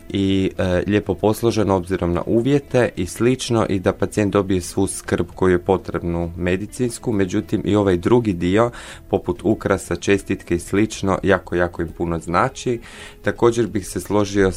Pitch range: 85-100 Hz